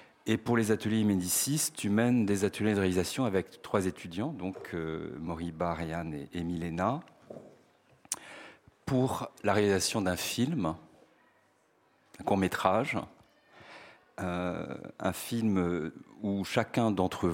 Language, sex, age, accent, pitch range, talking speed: French, male, 40-59, French, 90-105 Hz, 115 wpm